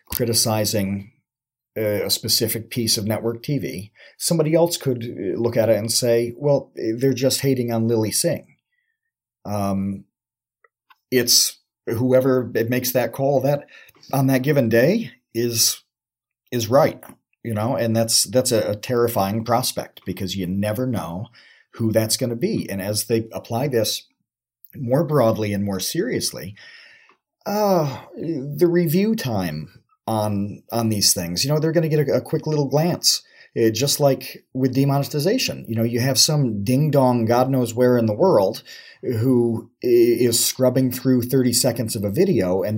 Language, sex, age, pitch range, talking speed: English, male, 40-59, 110-135 Hz, 155 wpm